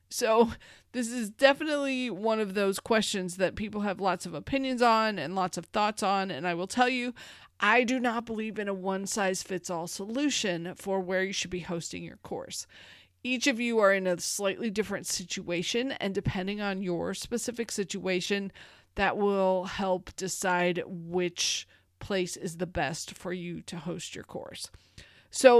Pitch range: 180-220 Hz